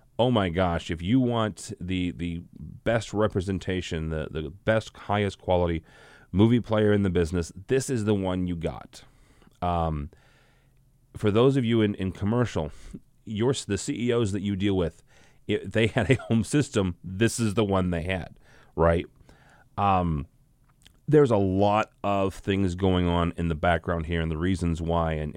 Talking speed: 170 wpm